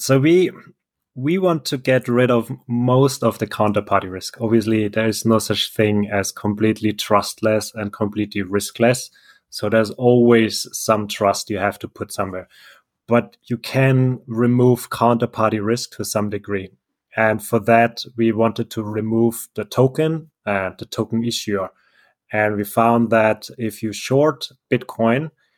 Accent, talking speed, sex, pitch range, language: German, 155 wpm, male, 105-120 Hz, English